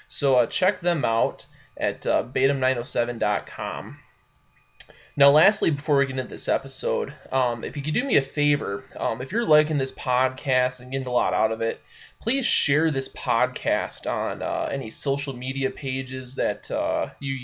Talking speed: 175 wpm